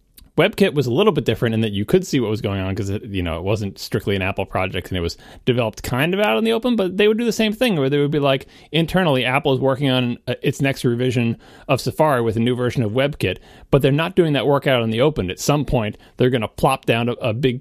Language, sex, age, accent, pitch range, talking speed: English, male, 30-49, American, 110-140 Hz, 285 wpm